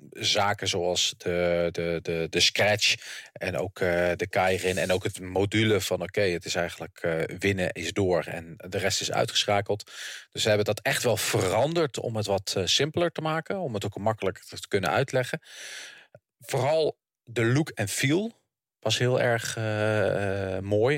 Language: English